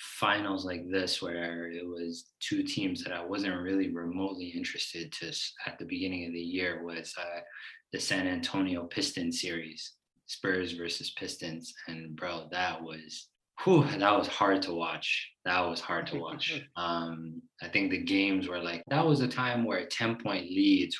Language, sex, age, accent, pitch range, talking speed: English, male, 20-39, American, 85-115 Hz, 175 wpm